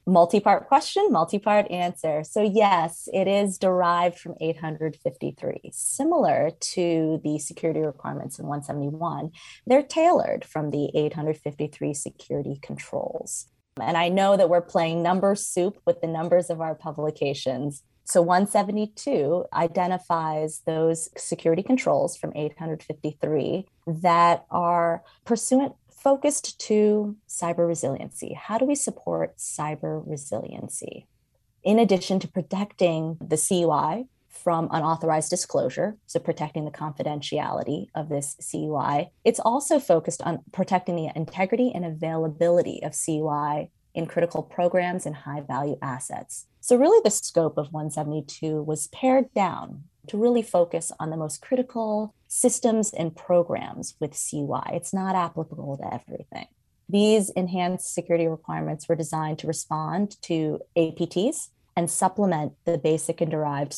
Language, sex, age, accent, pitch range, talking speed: English, female, 20-39, American, 155-195 Hz, 125 wpm